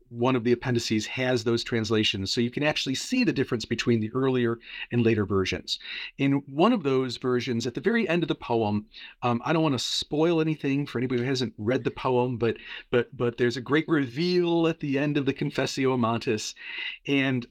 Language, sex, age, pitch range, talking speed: English, male, 40-59, 120-160 Hz, 210 wpm